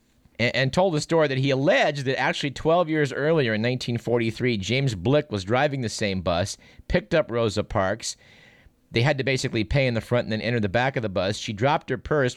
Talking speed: 220 wpm